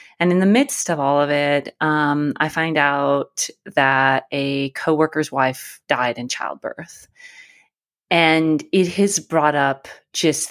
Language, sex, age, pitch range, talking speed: English, female, 30-49, 150-195 Hz, 145 wpm